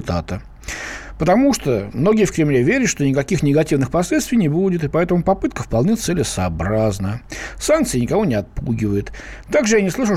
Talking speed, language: 150 wpm, Russian